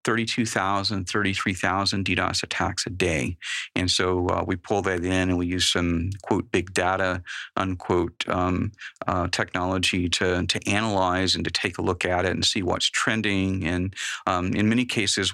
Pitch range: 90-110 Hz